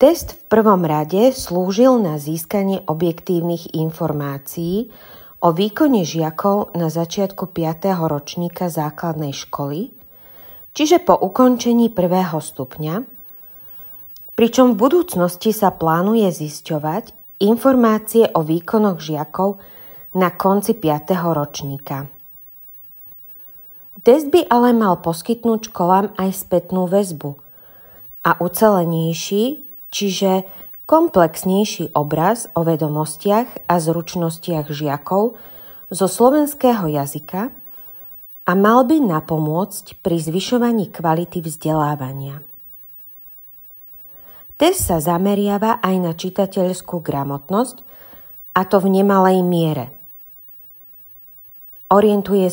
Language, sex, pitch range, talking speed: Slovak, female, 160-210 Hz, 90 wpm